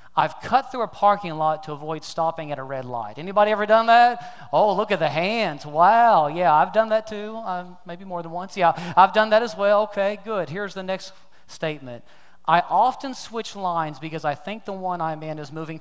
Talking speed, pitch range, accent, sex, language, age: 220 wpm, 160-220 Hz, American, male, English, 30-49